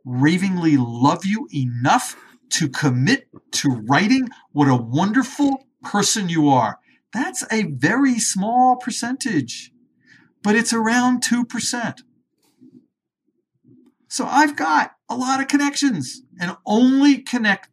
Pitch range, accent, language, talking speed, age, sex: 160-255 Hz, American, English, 110 wpm, 50-69, male